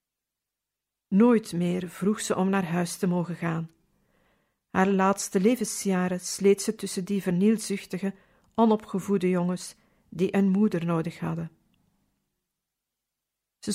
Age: 50-69